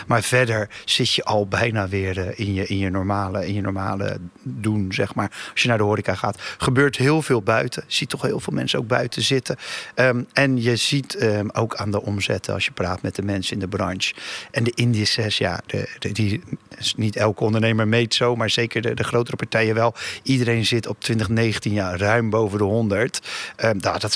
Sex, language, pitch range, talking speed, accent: male, Dutch, 105-120 Hz, 215 wpm, Dutch